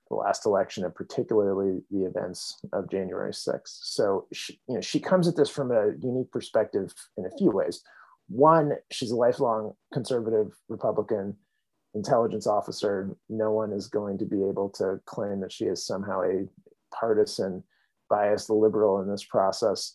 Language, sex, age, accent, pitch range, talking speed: English, male, 30-49, American, 100-140 Hz, 160 wpm